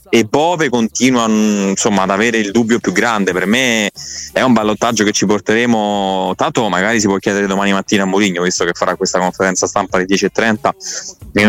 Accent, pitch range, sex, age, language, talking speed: native, 95-115 Hz, male, 20-39, Italian, 170 wpm